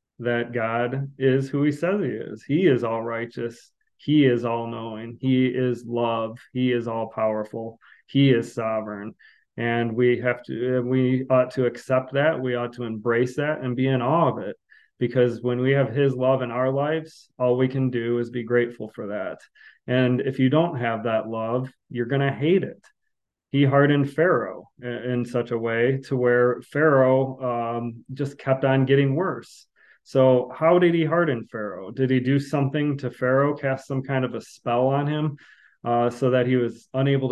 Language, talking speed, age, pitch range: English, 190 wpm, 30-49, 120-135 Hz